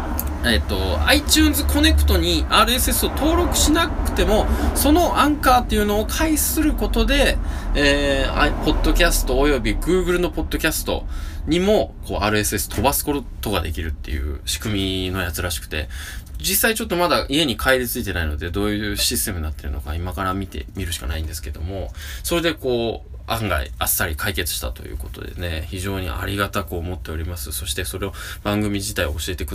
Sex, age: male, 20-39